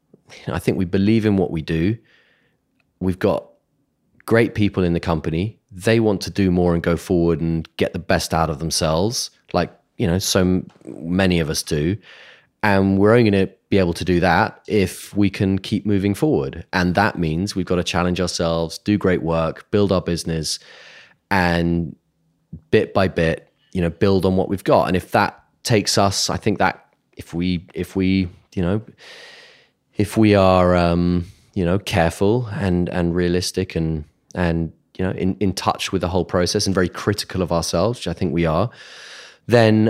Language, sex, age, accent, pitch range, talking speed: English, male, 30-49, British, 85-100 Hz, 190 wpm